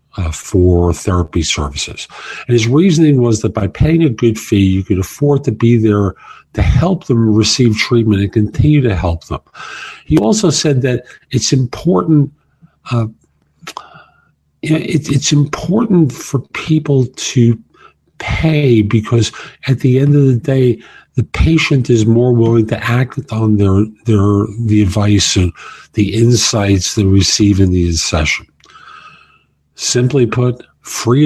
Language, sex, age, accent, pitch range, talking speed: English, male, 50-69, American, 100-130 Hz, 140 wpm